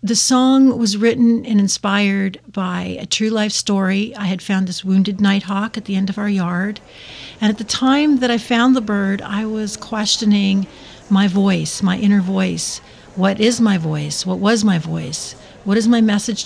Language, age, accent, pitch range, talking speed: English, 50-69, American, 185-215 Hz, 195 wpm